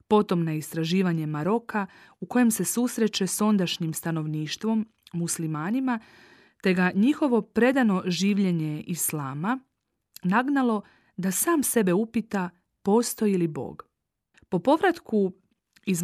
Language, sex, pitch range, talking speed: Croatian, female, 170-235 Hz, 110 wpm